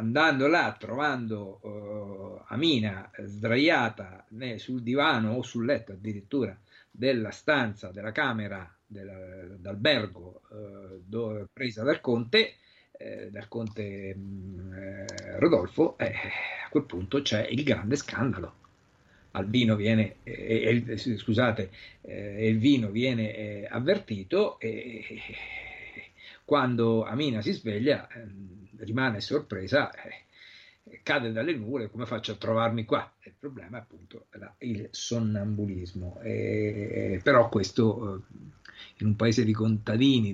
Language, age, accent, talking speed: Italian, 50-69, native, 120 wpm